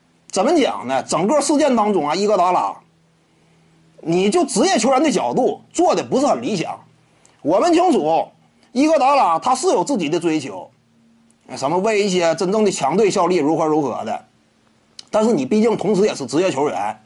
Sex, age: male, 30-49